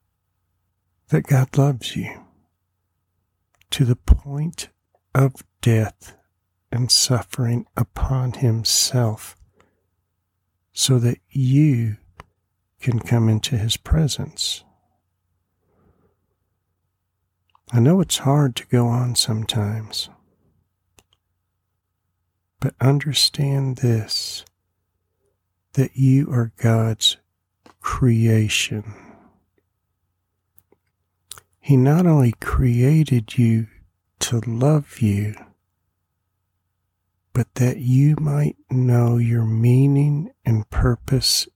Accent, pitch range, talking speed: American, 90-125 Hz, 80 wpm